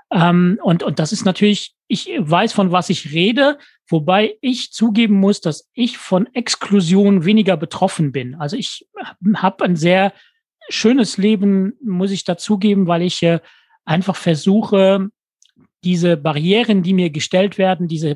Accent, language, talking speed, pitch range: German, German, 140 wpm, 170-215 Hz